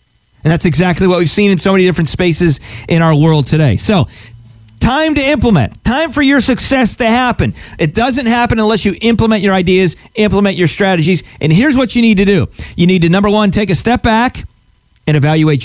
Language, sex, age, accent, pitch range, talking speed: English, male, 40-59, American, 160-225 Hz, 205 wpm